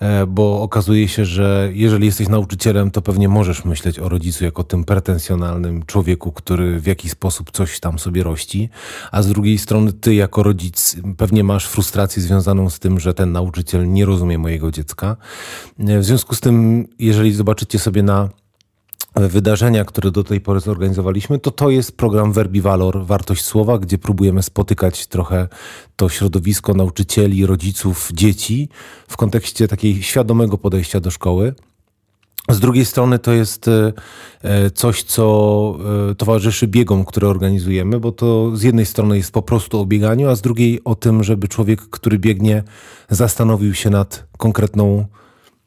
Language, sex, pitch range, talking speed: Polish, male, 95-110 Hz, 155 wpm